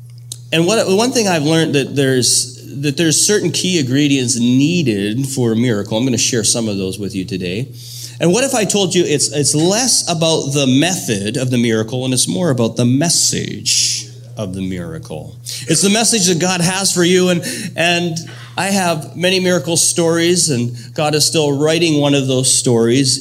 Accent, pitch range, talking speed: American, 115-150 Hz, 195 wpm